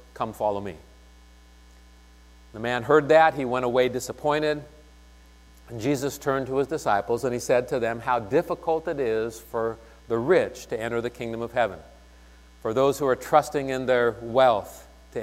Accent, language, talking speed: American, English, 175 wpm